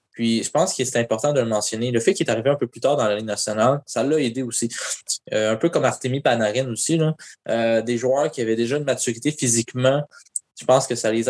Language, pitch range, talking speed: French, 115-130 Hz, 255 wpm